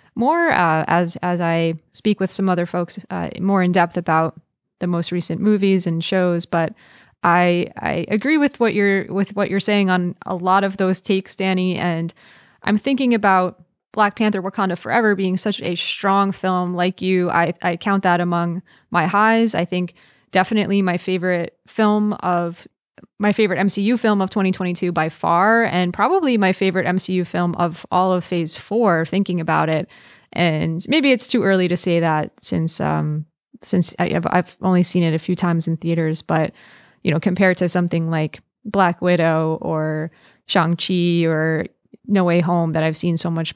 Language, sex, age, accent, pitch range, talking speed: English, female, 20-39, American, 170-200 Hz, 185 wpm